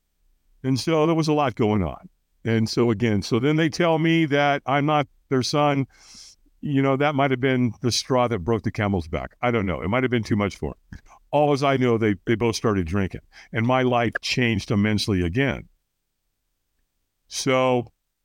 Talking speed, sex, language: 195 wpm, male, English